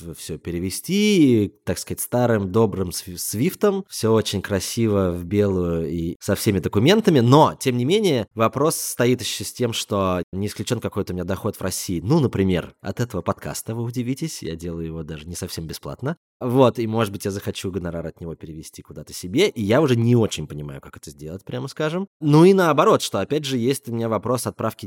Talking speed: 200 wpm